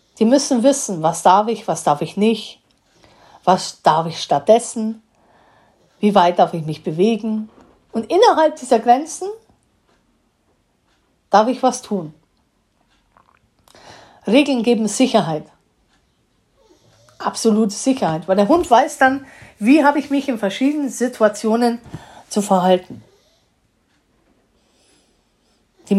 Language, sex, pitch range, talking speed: German, female, 185-270 Hz, 110 wpm